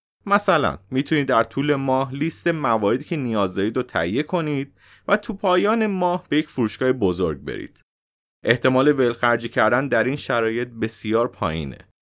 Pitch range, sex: 110-155 Hz, male